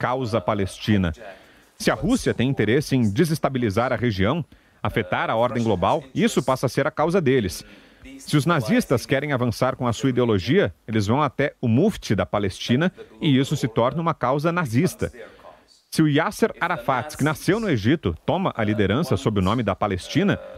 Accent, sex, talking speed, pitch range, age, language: Brazilian, male, 180 wpm, 115-165 Hz, 40-59, Portuguese